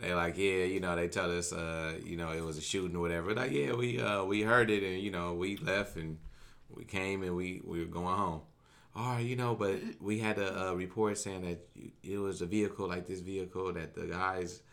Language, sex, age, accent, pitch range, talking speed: English, male, 20-39, American, 90-110 Hz, 255 wpm